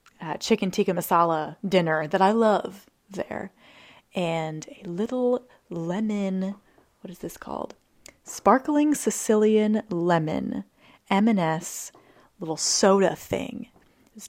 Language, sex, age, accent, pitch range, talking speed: English, female, 30-49, American, 175-225 Hz, 110 wpm